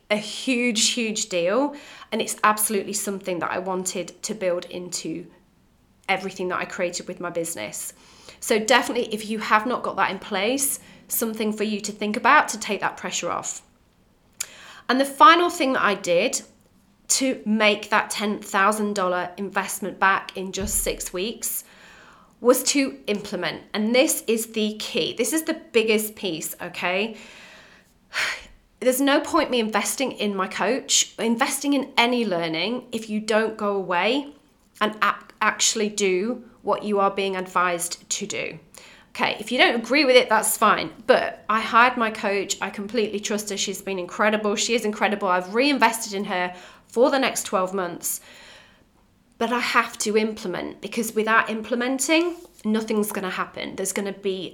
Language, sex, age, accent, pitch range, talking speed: English, female, 30-49, British, 195-240 Hz, 165 wpm